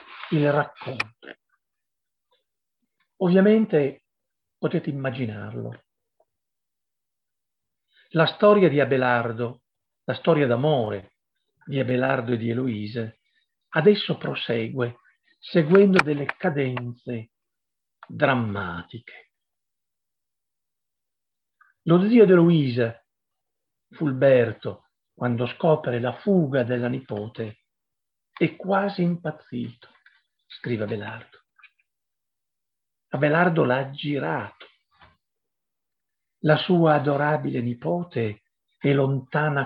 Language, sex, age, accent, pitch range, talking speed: Italian, male, 50-69, native, 125-175 Hz, 75 wpm